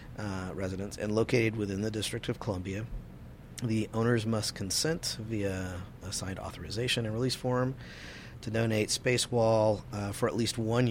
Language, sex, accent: English, male, American